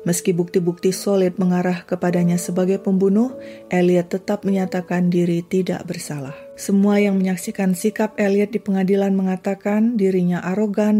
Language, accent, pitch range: Indonesian, native, 180-200 Hz